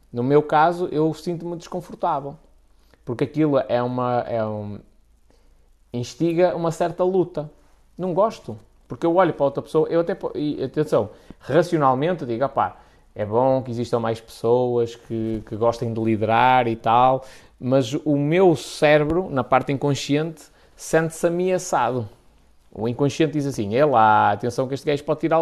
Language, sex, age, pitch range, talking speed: Portuguese, male, 20-39, 120-165 Hz, 150 wpm